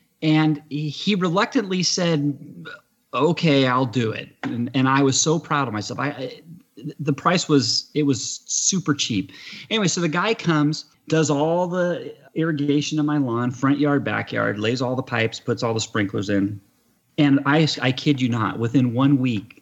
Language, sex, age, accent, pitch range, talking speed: English, male, 30-49, American, 120-150 Hz, 170 wpm